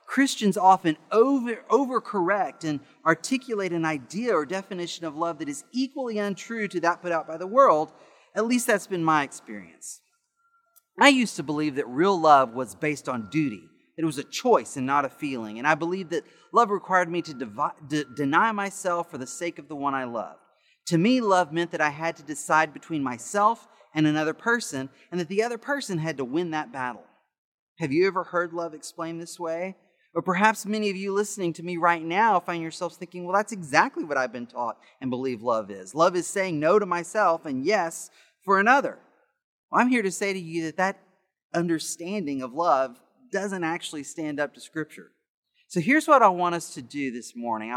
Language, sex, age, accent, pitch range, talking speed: English, male, 30-49, American, 150-205 Hz, 200 wpm